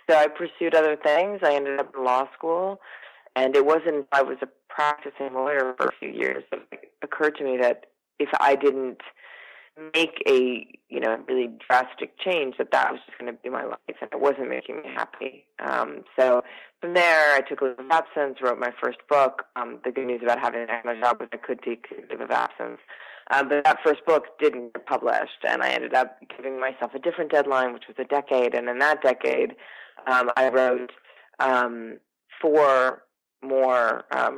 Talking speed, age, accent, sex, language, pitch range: 200 wpm, 20-39, American, female, English, 125-145 Hz